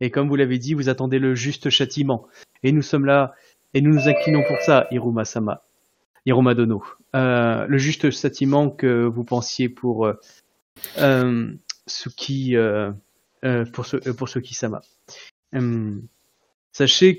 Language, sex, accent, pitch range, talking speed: French, male, French, 120-140 Hz, 145 wpm